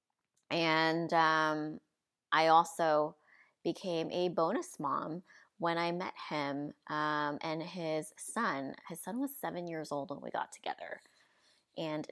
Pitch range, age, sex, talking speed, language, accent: 155-180 Hz, 20-39, female, 135 wpm, English, American